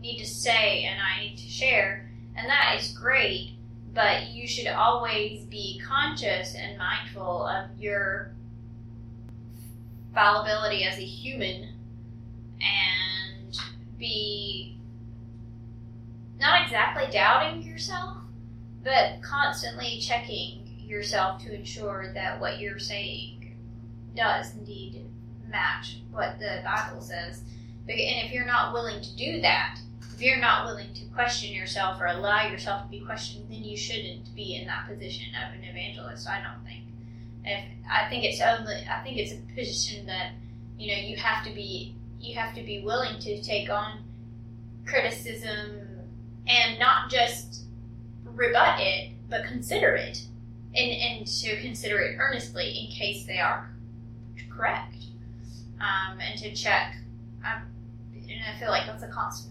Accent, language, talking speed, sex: American, English, 140 wpm, female